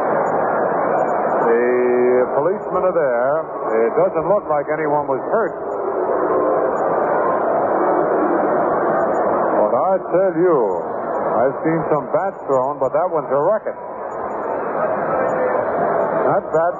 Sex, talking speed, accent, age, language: male, 95 wpm, American, 50-69, English